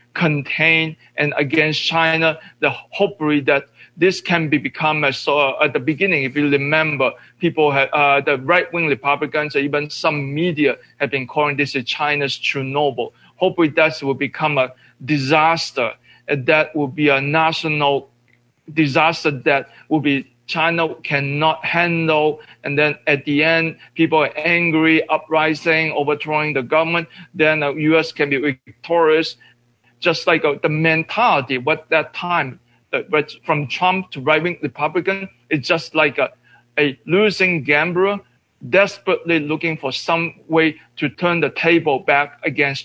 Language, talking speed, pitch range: English, 145 wpm, 140-165 Hz